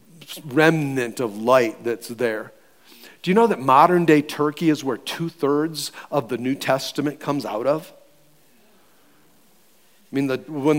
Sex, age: male, 40-59